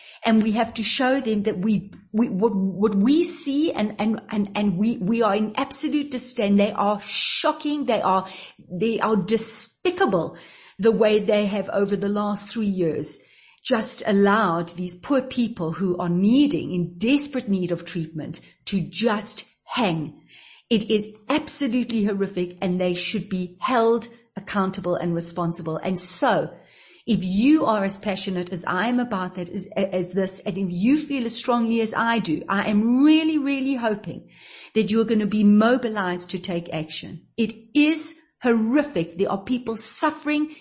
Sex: female